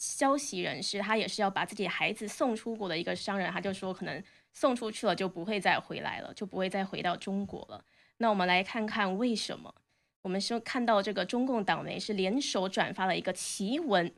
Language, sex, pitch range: Chinese, female, 195-255 Hz